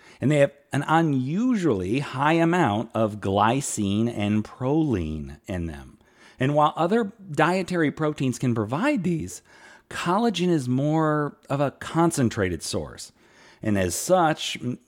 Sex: male